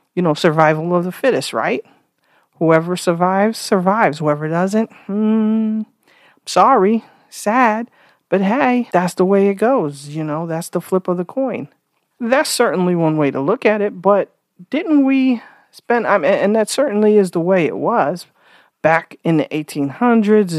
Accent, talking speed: American, 165 wpm